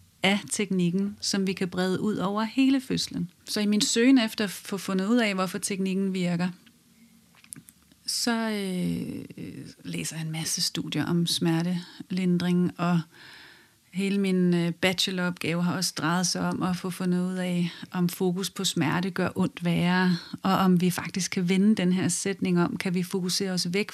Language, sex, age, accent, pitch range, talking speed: Danish, female, 30-49, native, 175-205 Hz, 175 wpm